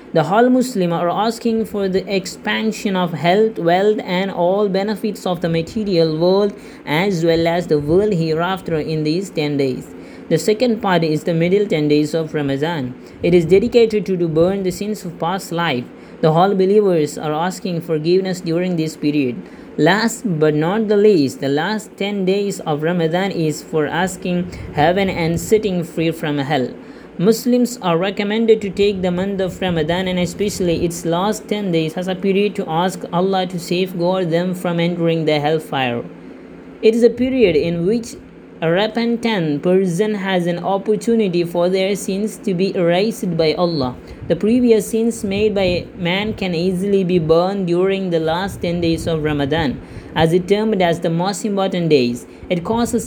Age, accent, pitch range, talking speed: 20-39, Indian, 165-205 Hz, 170 wpm